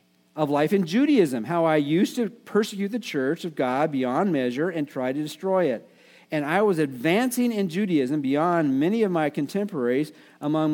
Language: English